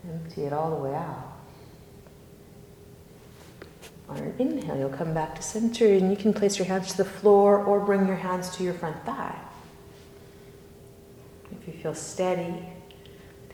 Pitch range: 160-205 Hz